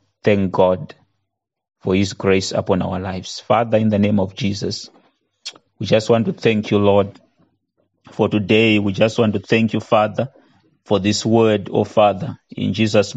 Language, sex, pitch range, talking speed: English, male, 100-120 Hz, 170 wpm